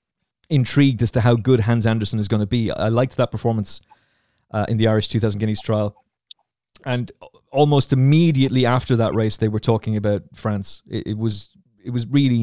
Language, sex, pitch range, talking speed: English, male, 105-120 Hz, 190 wpm